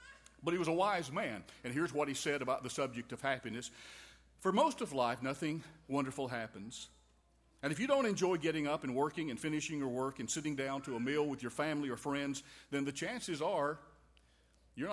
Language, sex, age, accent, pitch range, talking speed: English, male, 50-69, American, 125-160 Hz, 210 wpm